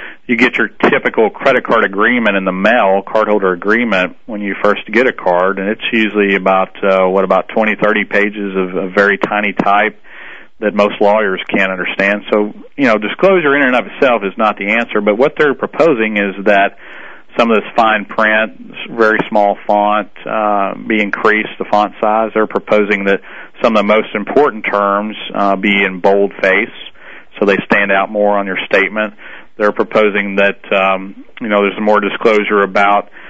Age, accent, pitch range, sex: 40-59, American, 100-105 Hz, male